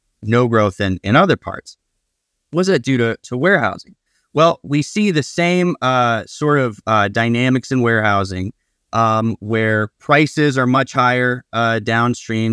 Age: 30-49